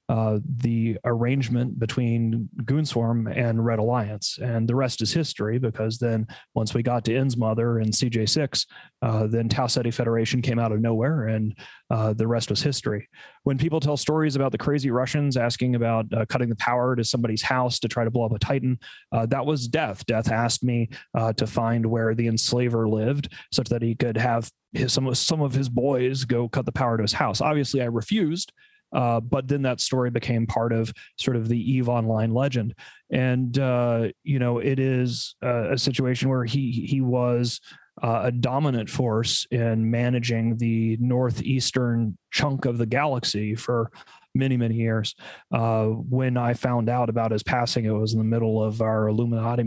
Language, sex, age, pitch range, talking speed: English, male, 30-49, 115-130 Hz, 190 wpm